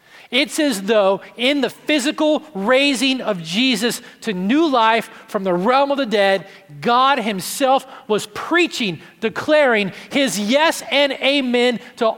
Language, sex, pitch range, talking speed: English, male, 185-255 Hz, 140 wpm